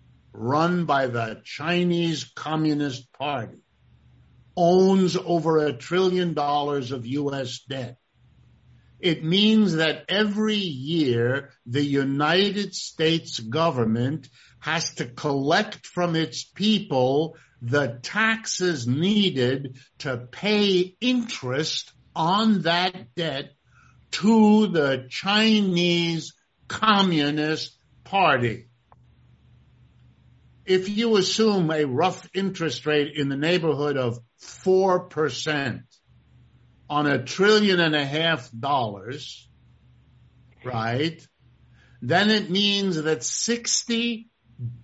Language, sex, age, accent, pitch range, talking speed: English, male, 60-79, American, 135-185 Hz, 90 wpm